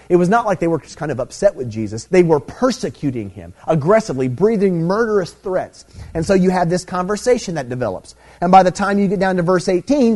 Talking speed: 225 wpm